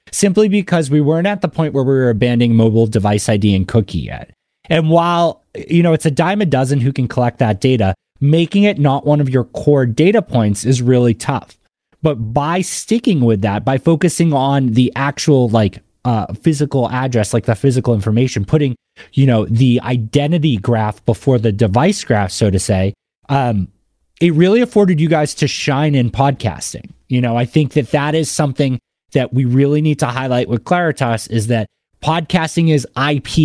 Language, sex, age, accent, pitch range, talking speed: English, male, 30-49, American, 120-150 Hz, 190 wpm